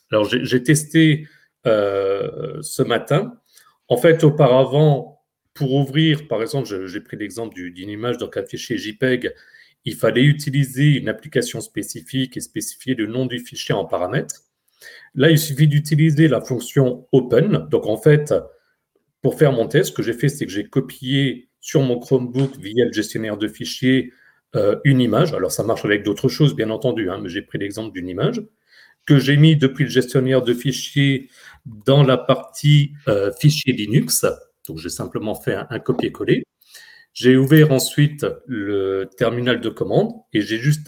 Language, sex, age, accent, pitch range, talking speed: French, male, 40-59, French, 120-150 Hz, 165 wpm